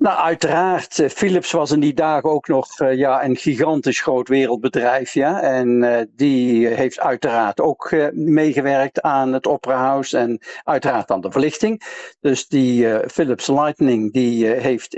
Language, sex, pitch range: Dutch, male, 130-155 Hz